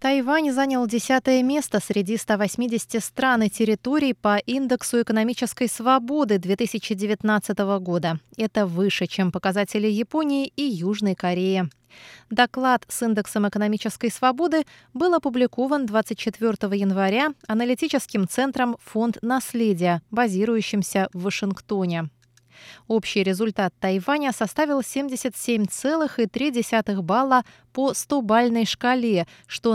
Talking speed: 105 wpm